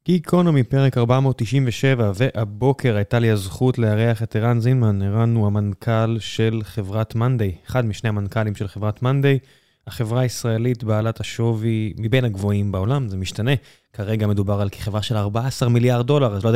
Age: 20-39